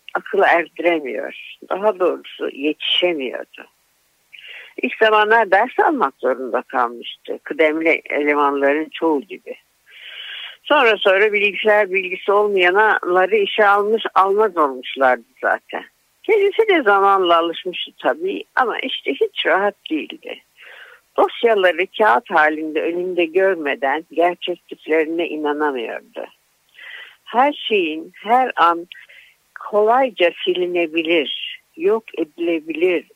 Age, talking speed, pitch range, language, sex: 60-79, 90 wpm, 160-240 Hz, Turkish, female